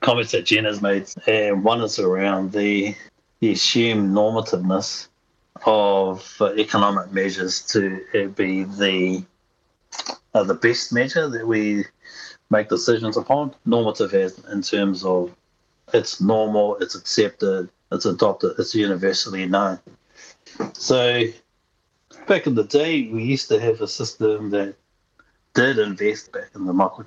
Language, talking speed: English, 130 wpm